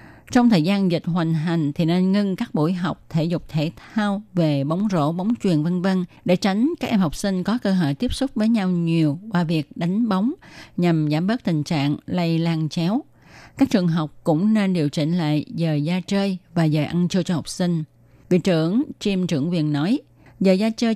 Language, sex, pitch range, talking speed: Vietnamese, female, 155-210 Hz, 220 wpm